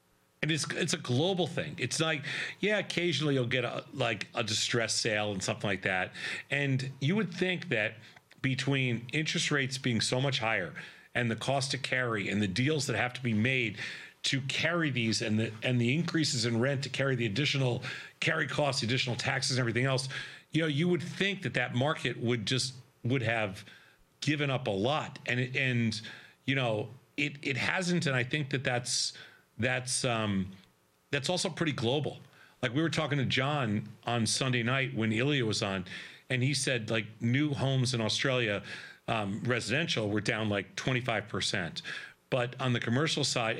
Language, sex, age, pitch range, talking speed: English, male, 40-59, 115-145 Hz, 185 wpm